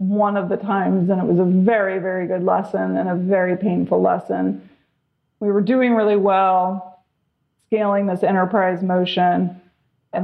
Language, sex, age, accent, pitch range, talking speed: English, female, 30-49, American, 180-200 Hz, 160 wpm